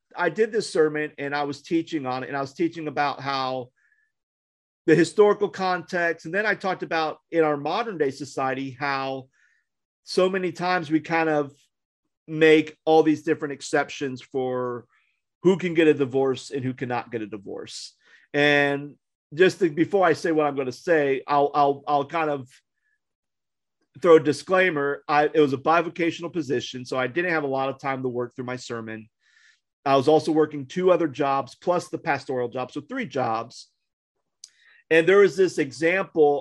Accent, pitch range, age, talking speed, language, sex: American, 130-165 Hz, 40-59, 180 wpm, English, male